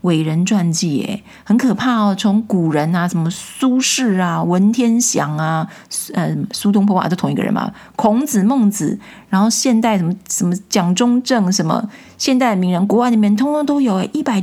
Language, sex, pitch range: Chinese, female, 195-240 Hz